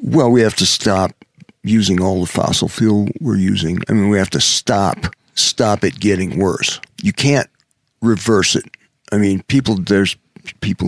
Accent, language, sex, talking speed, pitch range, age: American, English, male, 170 wpm, 95-110 Hz, 60-79